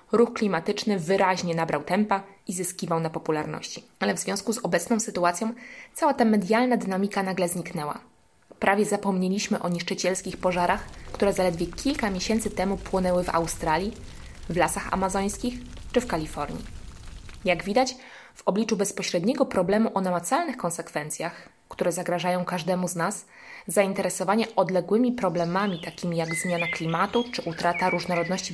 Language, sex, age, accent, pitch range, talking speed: Polish, female, 20-39, native, 170-210 Hz, 135 wpm